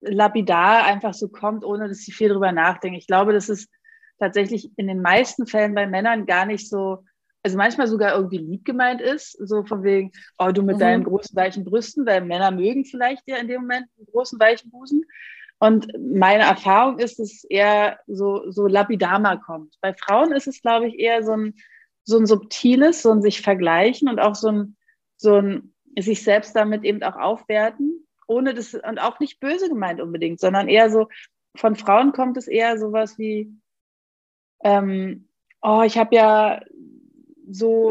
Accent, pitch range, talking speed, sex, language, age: German, 200-235 Hz, 180 wpm, female, German, 30-49